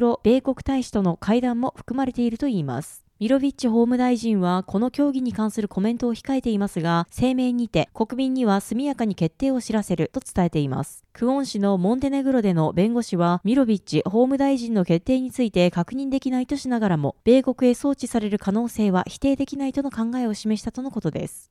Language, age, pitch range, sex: Japanese, 20-39, 190-260 Hz, female